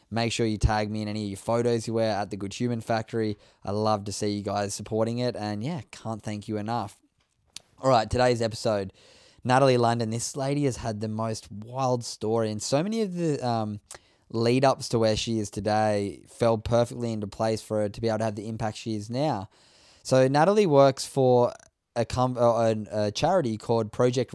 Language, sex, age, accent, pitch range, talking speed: English, male, 10-29, Australian, 105-120 Hz, 210 wpm